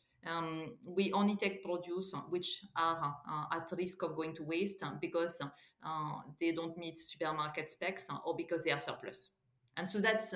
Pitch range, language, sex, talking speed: 160-185 Hz, English, female, 170 wpm